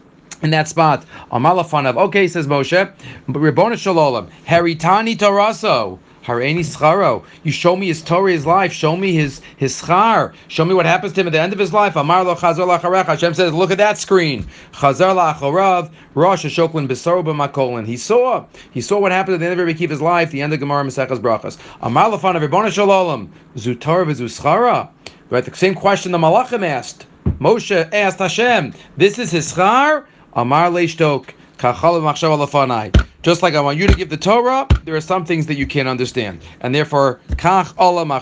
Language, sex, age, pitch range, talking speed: English, male, 40-59, 140-180 Hz, 175 wpm